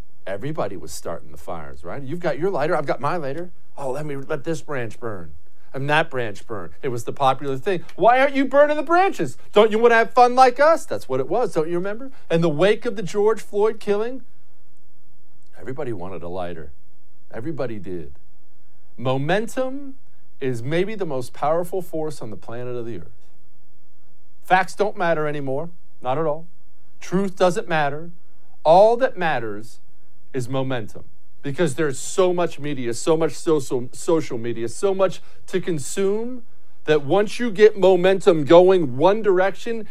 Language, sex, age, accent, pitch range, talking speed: English, male, 50-69, American, 140-215 Hz, 175 wpm